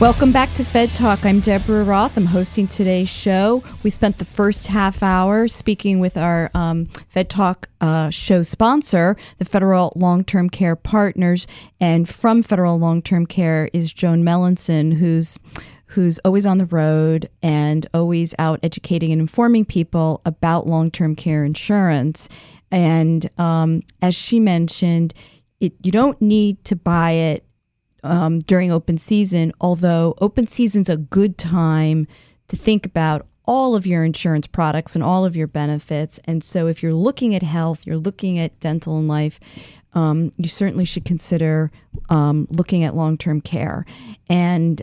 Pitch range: 160-190 Hz